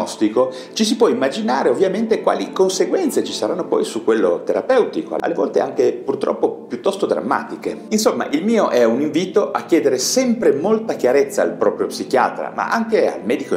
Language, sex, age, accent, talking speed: Italian, male, 40-59, native, 165 wpm